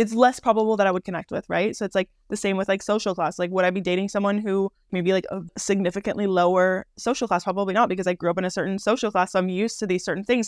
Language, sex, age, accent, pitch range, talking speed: English, female, 20-39, American, 175-205 Hz, 285 wpm